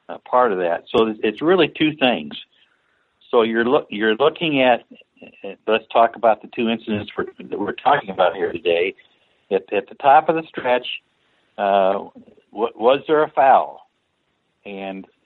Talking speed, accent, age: 175 wpm, American, 60-79